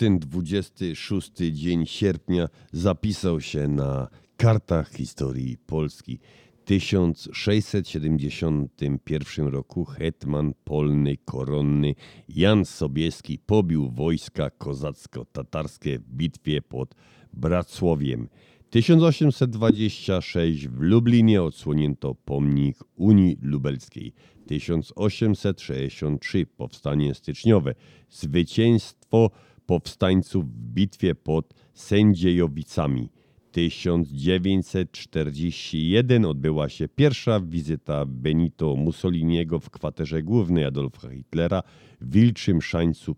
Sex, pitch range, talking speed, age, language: male, 75-100 Hz, 75 wpm, 50-69, Polish